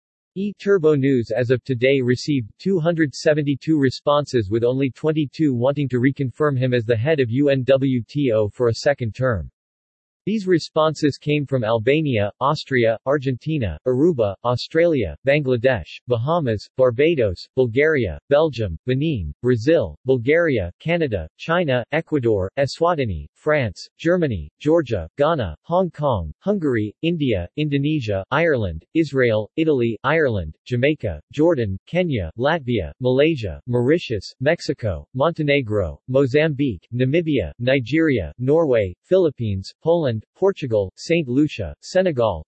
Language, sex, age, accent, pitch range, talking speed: English, male, 40-59, American, 110-155 Hz, 105 wpm